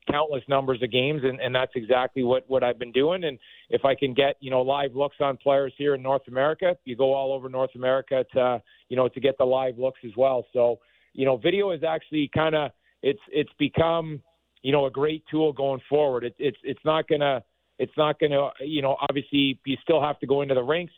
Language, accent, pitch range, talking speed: English, American, 130-145 Hz, 230 wpm